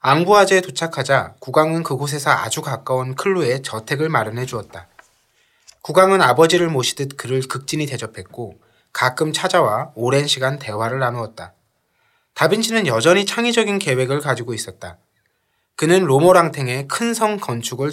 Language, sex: Korean, male